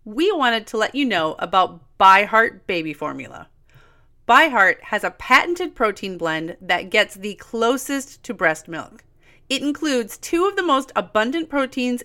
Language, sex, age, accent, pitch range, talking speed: English, female, 30-49, American, 190-270 Hz, 155 wpm